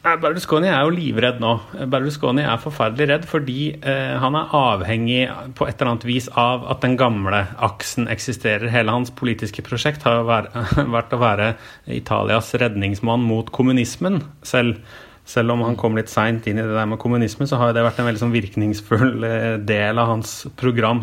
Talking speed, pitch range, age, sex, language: 170 wpm, 115-140 Hz, 30-49, male, English